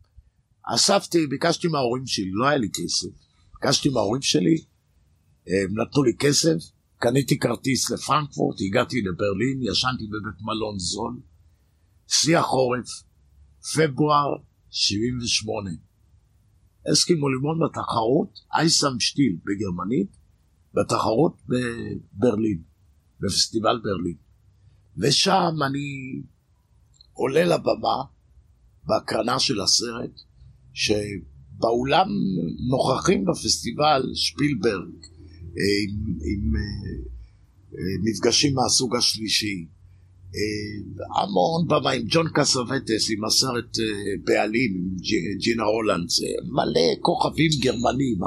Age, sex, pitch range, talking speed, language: 50-69, male, 90-130 Hz, 85 wpm, Hebrew